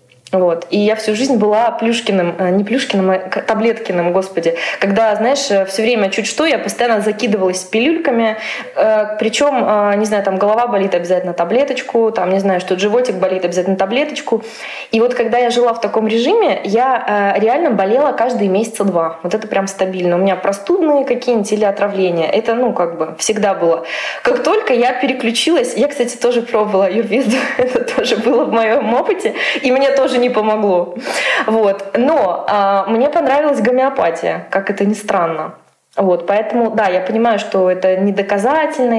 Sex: female